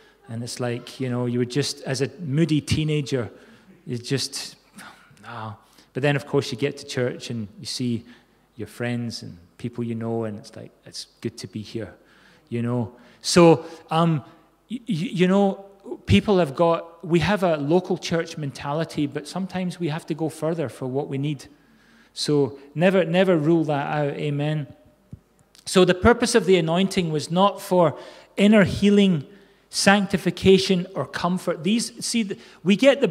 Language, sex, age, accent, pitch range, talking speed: English, male, 30-49, British, 135-180 Hz, 170 wpm